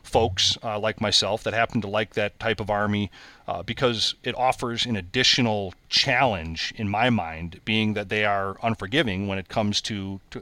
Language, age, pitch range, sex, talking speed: English, 40-59, 100-120 Hz, male, 185 wpm